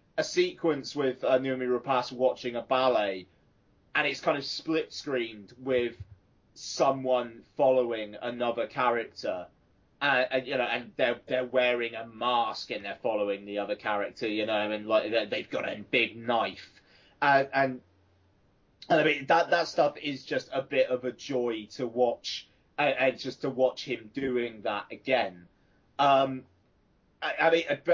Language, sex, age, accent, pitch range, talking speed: English, male, 30-49, British, 120-145 Hz, 160 wpm